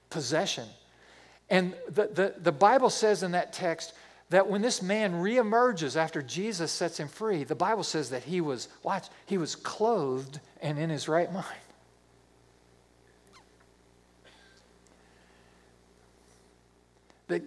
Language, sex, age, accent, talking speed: English, male, 50-69, American, 125 wpm